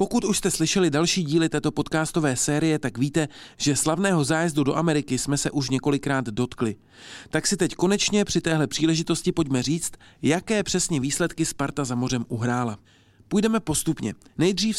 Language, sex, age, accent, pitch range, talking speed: Czech, male, 40-59, native, 130-170 Hz, 160 wpm